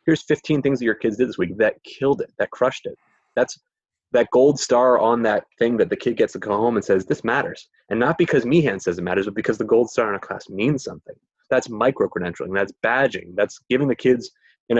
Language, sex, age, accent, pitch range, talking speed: English, male, 20-39, American, 105-130 Hz, 240 wpm